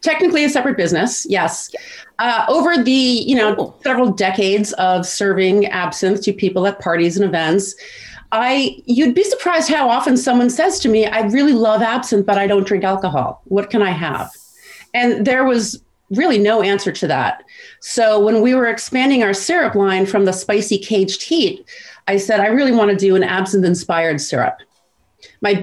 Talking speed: 180 wpm